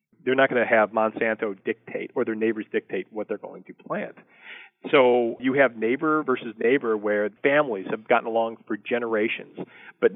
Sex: male